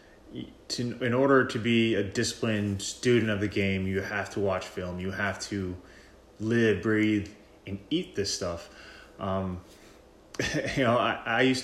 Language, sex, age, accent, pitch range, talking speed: English, male, 20-39, American, 100-120 Hz, 155 wpm